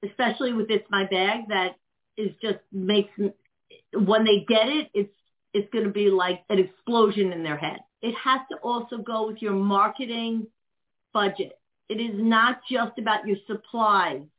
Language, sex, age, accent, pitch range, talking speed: English, female, 50-69, American, 205-265 Hz, 165 wpm